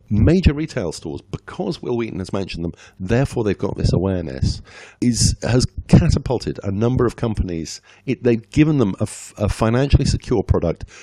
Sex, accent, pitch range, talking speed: male, British, 85-110 Hz, 170 wpm